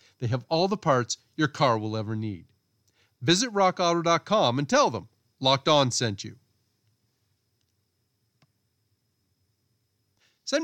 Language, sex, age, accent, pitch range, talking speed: English, male, 40-59, American, 115-165 Hz, 115 wpm